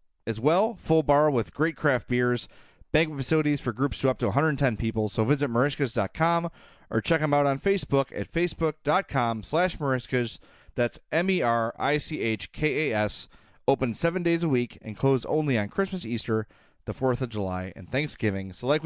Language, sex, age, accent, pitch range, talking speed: English, male, 30-49, American, 110-145 Hz, 160 wpm